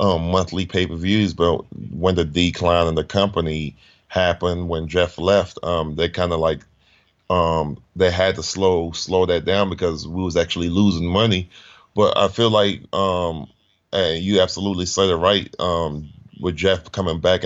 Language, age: English, 30-49